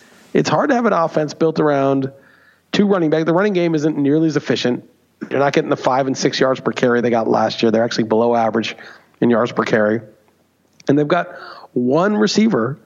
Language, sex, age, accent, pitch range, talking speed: English, male, 40-59, American, 125-155 Hz, 210 wpm